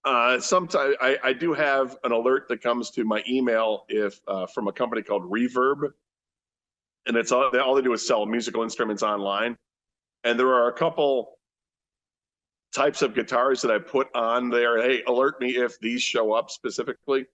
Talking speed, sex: 185 wpm, male